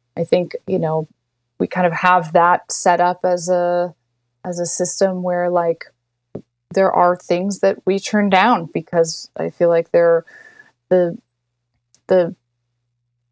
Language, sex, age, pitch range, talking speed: English, female, 20-39, 165-200 Hz, 140 wpm